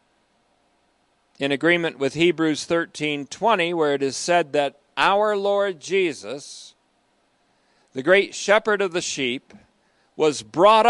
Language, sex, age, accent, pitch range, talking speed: English, male, 50-69, American, 155-205 Hz, 115 wpm